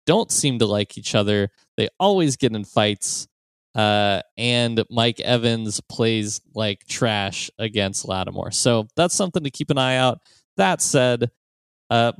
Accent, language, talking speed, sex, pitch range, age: American, English, 150 wpm, male, 100-120 Hz, 20-39